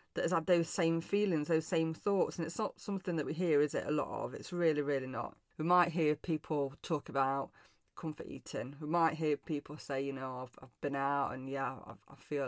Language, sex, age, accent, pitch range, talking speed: English, female, 30-49, British, 145-170 Hz, 235 wpm